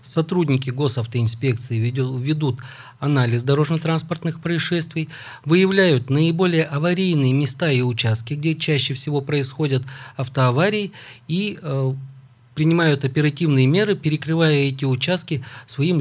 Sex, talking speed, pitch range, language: male, 95 wpm, 125-155 Hz, Russian